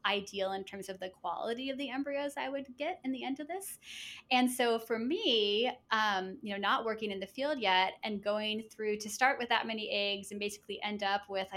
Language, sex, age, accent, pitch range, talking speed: English, female, 20-39, American, 200-235 Hz, 230 wpm